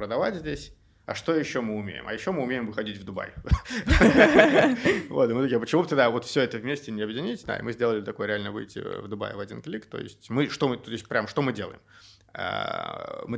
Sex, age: male, 20-39